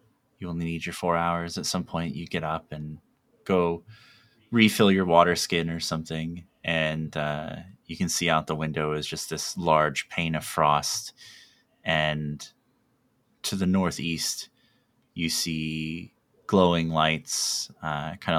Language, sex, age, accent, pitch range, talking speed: English, male, 20-39, American, 75-85 Hz, 145 wpm